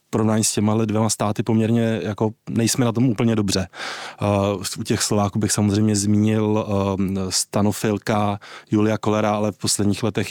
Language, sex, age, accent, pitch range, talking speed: Czech, male, 20-39, native, 105-115 Hz, 165 wpm